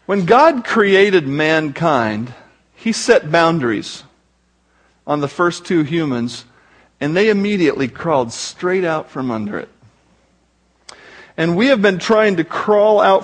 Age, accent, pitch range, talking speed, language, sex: 50-69, American, 155-210 Hz, 130 wpm, English, male